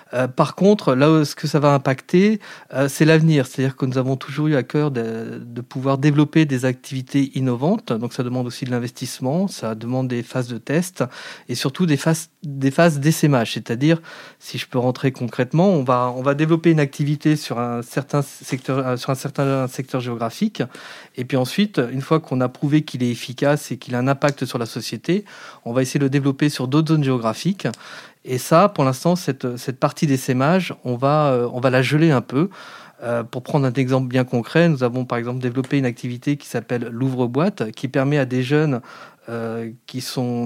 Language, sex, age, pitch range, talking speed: French, male, 40-59, 125-150 Hz, 205 wpm